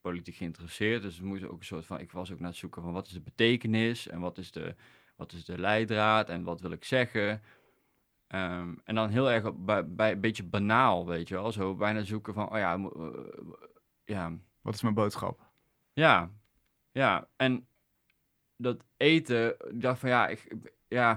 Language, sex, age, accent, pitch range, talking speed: Dutch, male, 20-39, Dutch, 100-120 Hz, 170 wpm